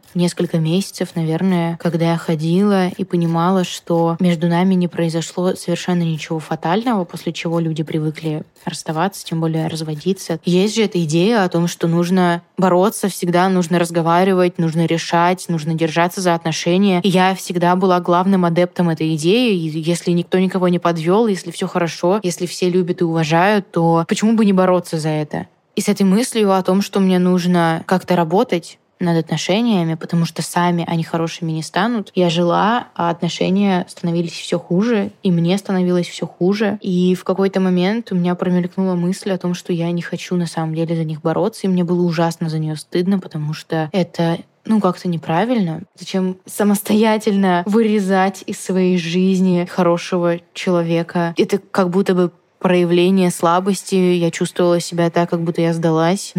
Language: Russian